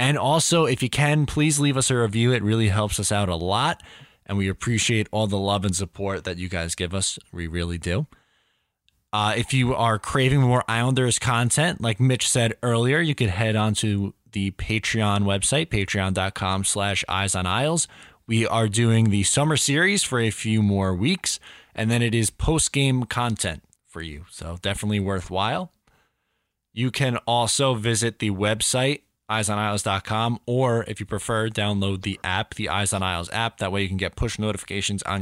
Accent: American